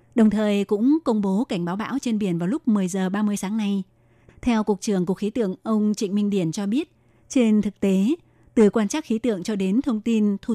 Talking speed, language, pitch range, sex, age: 240 wpm, Vietnamese, 195-225 Hz, female, 20-39